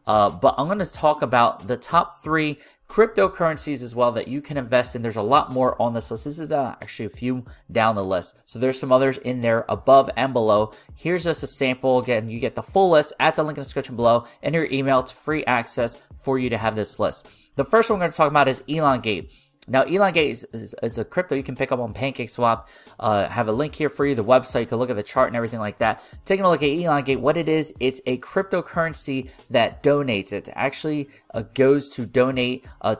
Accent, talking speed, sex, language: American, 245 wpm, male, English